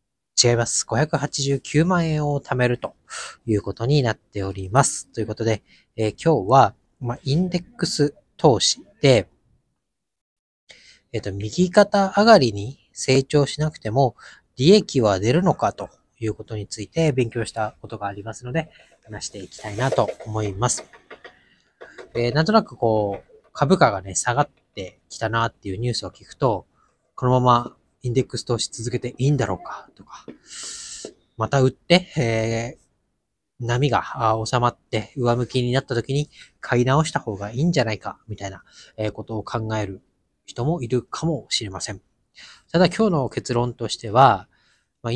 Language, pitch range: Japanese, 110-145 Hz